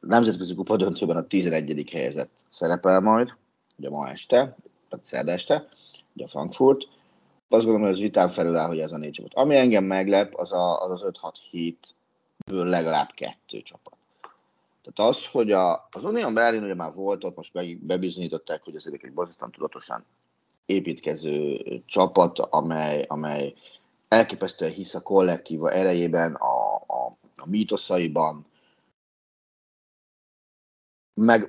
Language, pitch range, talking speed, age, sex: Hungarian, 80-110 Hz, 135 wpm, 30-49, male